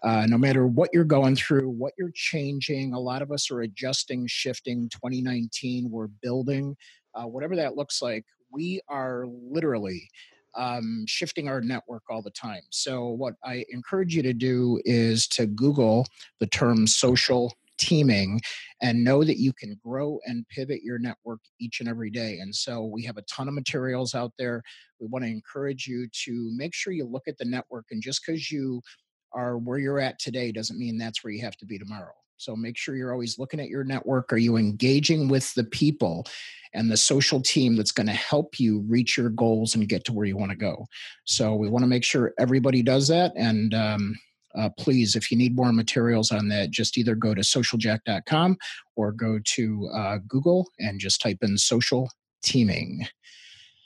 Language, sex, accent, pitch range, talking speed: English, male, American, 115-135 Hz, 195 wpm